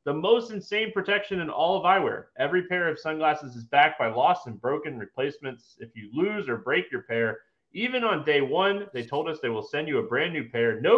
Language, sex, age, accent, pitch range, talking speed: English, male, 30-49, American, 140-215 Hz, 230 wpm